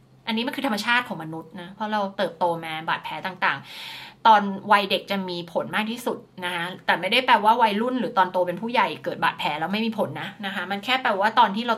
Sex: female